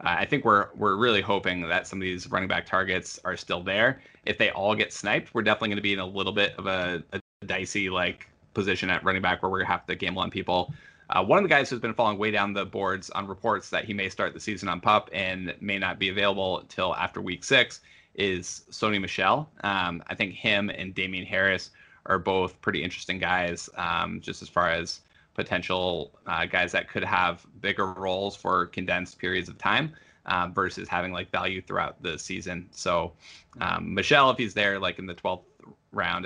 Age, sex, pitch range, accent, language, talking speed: 20-39, male, 90-100 Hz, American, English, 215 wpm